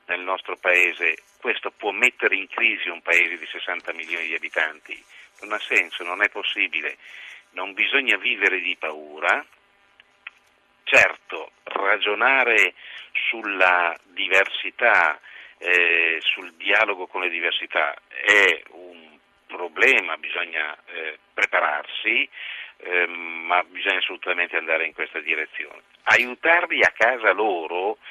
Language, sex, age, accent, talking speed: Italian, male, 50-69, native, 115 wpm